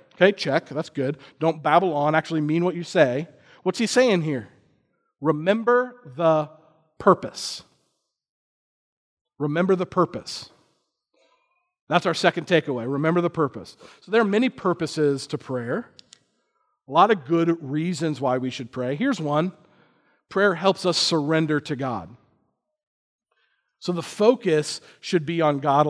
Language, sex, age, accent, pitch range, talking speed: English, male, 40-59, American, 140-180 Hz, 140 wpm